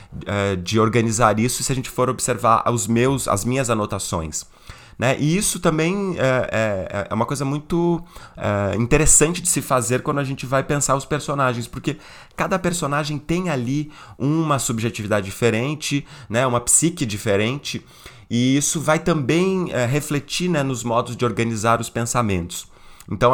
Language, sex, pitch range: Portuguese, male, 110-145 Hz